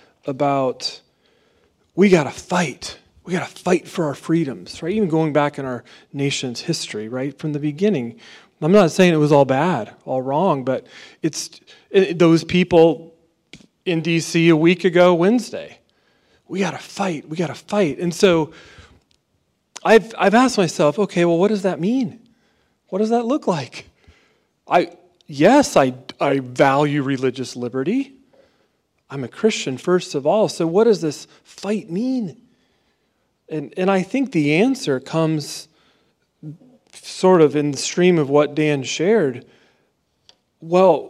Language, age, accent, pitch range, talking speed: English, 40-59, American, 145-195 Hz, 145 wpm